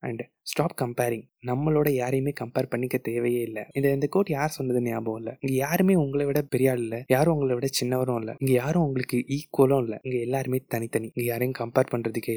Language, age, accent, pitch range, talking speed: Tamil, 20-39, native, 120-135 Hz, 190 wpm